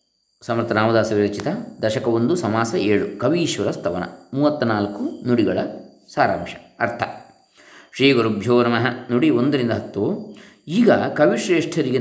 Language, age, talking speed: Kannada, 20-39, 95 wpm